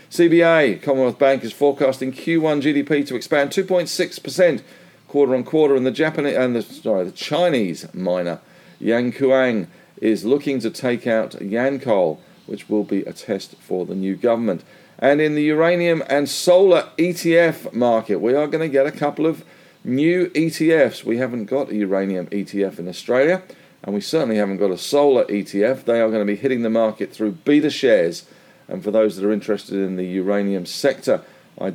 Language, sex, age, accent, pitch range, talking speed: English, male, 50-69, British, 100-145 Hz, 180 wpm